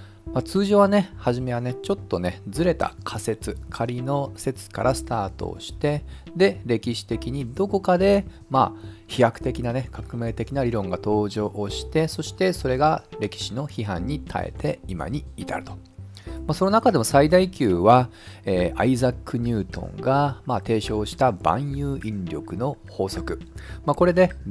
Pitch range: 100-150 Hz